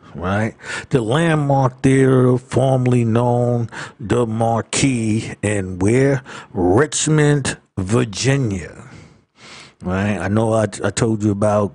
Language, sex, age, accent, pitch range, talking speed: English, male, 50-69, American, 100-130 Hz, 100 wpm